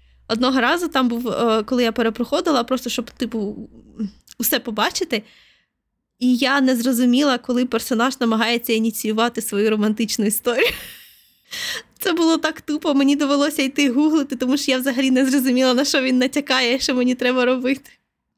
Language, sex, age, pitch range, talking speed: Ukrainian, female, 20-39, 220-270 Hz, 145 wpm